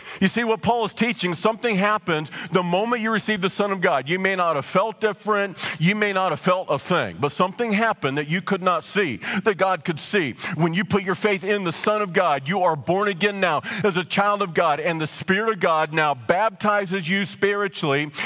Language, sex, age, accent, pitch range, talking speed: English, male, 50-69, American, 170-210 Hz, 230 wpm